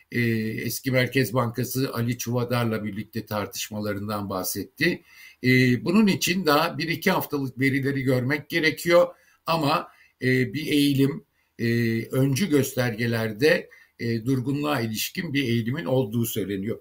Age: 60-79